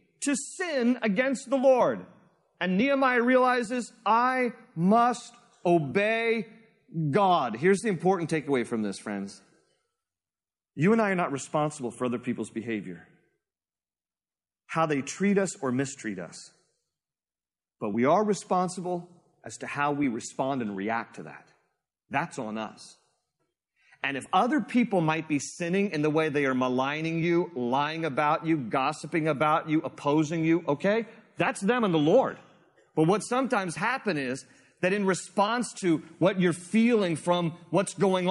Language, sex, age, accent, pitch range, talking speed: English, male, 40-59, American, 150-225 Hz, 150 wpm